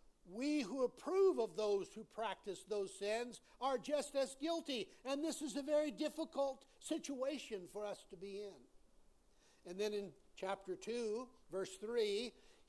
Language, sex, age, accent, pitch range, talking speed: English, male, 60-79, American, 210-255 Hz, 150 wpm